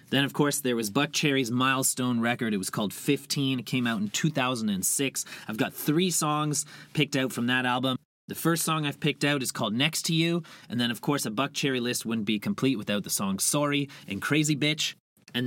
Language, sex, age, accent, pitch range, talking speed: English, male, 30-49, American, 125-155 Hz, 220 wpm